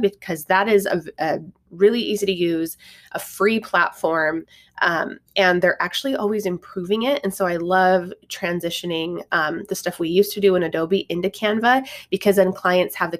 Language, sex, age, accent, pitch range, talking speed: English, female, 20-39, American, 165-200 Hz, 180 wpm